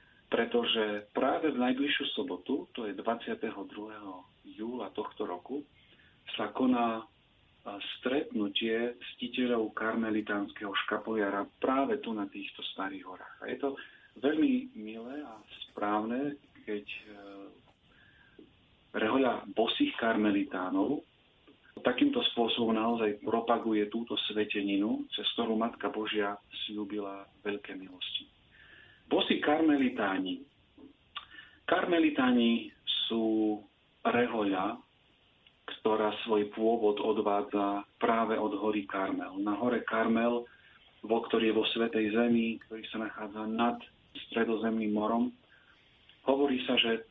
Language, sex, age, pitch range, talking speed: Slovak, male, 40-59, 105-120 Hz, 100 wpm